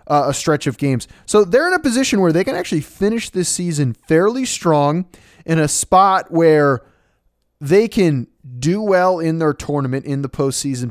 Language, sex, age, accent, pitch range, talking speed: English, male, 20-39, American, 130-165 Hz, 180 wpm